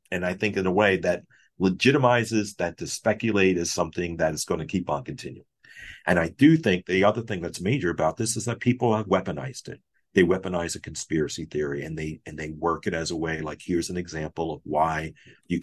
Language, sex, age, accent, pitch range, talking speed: English, male, 50-69, American, 80-100 Hz, 225 wpm